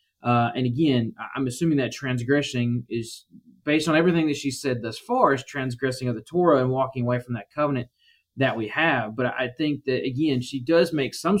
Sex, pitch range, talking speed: male, 120-145 Hz, 205 wpm